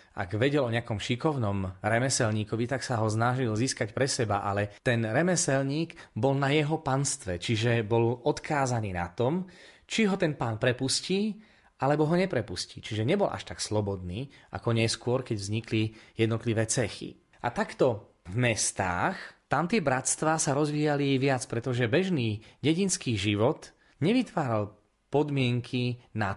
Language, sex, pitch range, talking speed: Slovak, male, 115-140 Hz, 140 wpm